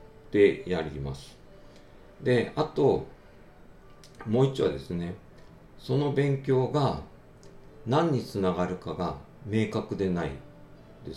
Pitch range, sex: 80-110 Hz, male